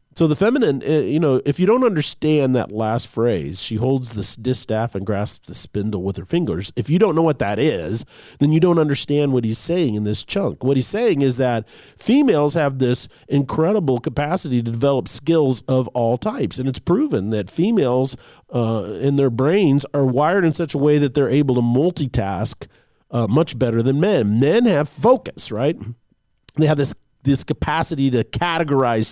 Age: 40-59